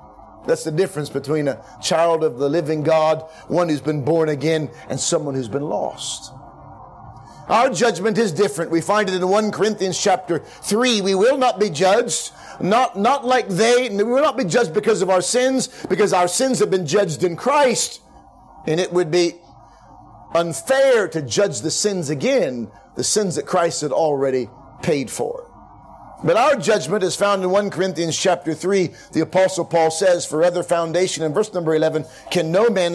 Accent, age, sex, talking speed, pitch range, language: American, 40-59, male, 185 wpm, 160-210 Hz, English